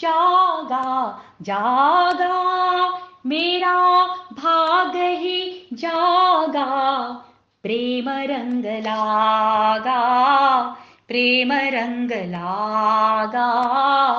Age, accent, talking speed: 30-49, native, 50 wpm